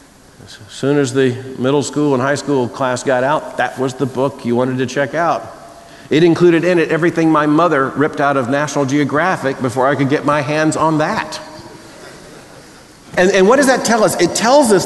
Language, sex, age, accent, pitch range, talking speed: English, male, 50-69, American, 115-185 Hz, 200 wpm